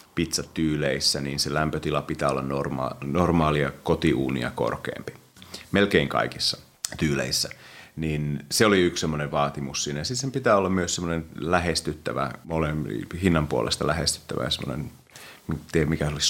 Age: 30-49